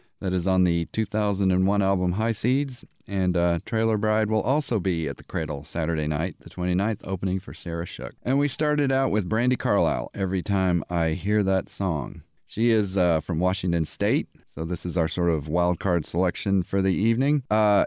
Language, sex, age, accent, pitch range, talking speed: English, male, 40-59, American, 90-115 Hz, 195 wpm